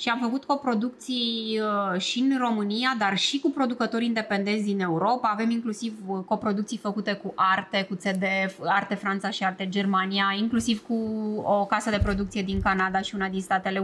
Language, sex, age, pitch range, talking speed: Romanian, female, 20-39, 200-245 Hz, 170 wpm